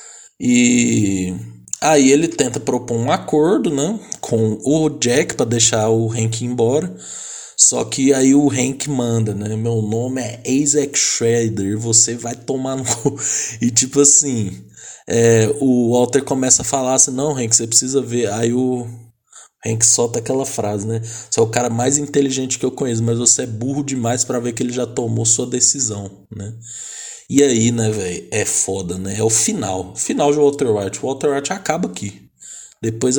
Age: 20-39